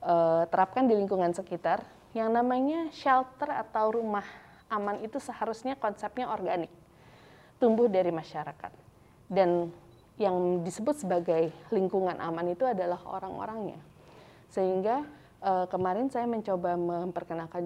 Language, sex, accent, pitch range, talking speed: Indonesian, female, native, 175-225 Hz, 105 wpm